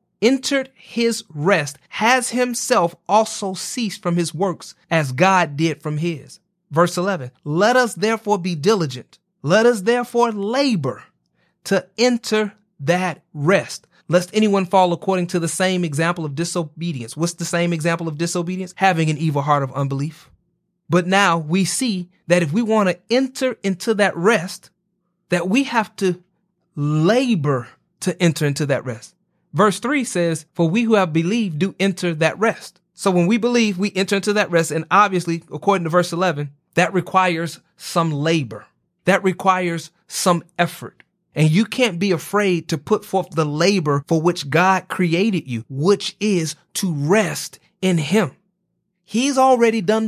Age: 30-49